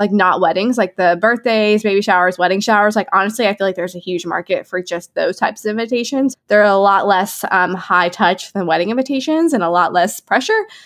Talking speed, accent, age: 220 wpm, American, 20-39